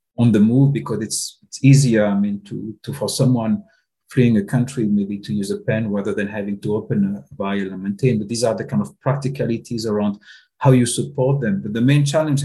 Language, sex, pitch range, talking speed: English, male, 105-130 Hz, 225 wpm